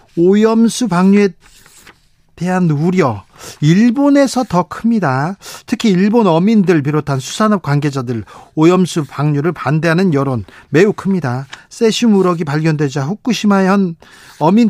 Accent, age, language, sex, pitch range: native, 40-59, Korean, male, 145-190 Hz